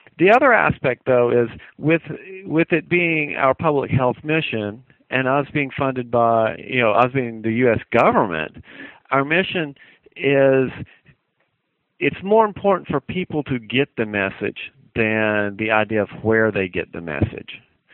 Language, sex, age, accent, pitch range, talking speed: English, male, 50-69, American, 110-150 Hz, 155 wpm